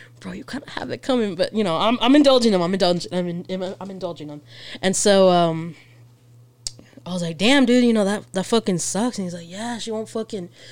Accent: American